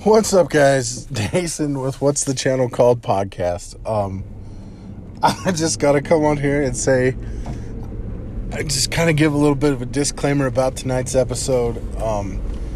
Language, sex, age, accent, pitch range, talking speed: English, male, 20-39, American, 110-145 Hz, 155 wpm